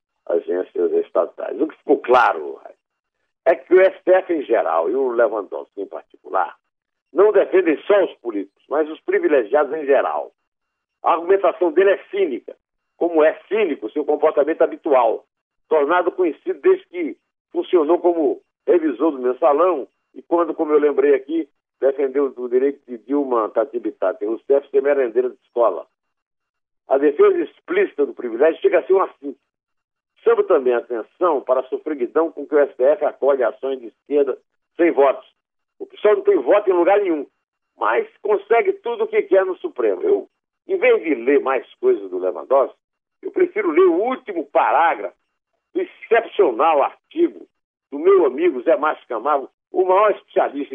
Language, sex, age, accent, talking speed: Portuguese, male, 60-79, Brazilian, 160 wpm